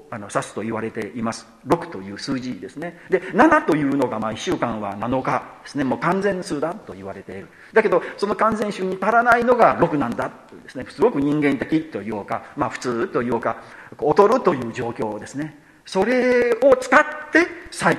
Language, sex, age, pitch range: Japanese, male, 40-59, 125-190 Hz